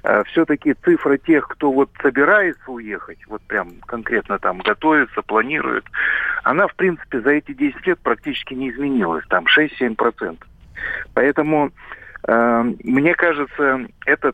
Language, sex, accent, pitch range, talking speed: Russian, male, native, 130-180 Hz, 125 wpm